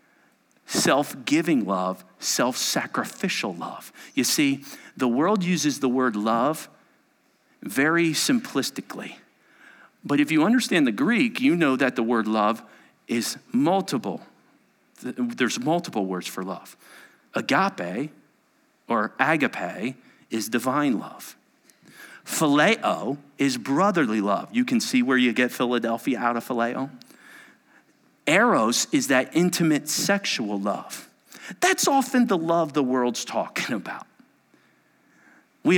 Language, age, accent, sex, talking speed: English, 40-59, American, male, 115 wpm